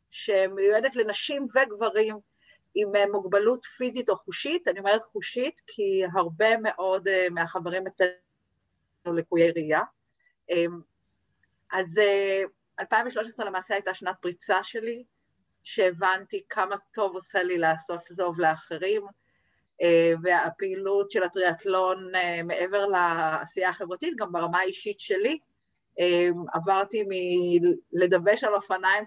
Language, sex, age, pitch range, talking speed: Hebrew, female, 30-49, 175-215 Hz, 100 wpm